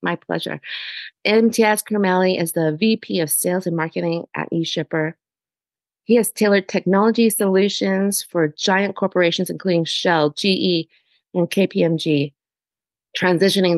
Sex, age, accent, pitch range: female, 30-49, American, 165-200 Hz